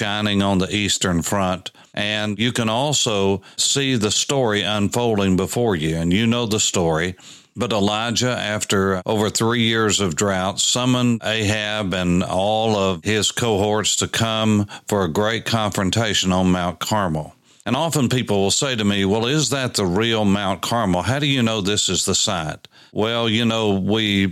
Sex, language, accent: male, English, American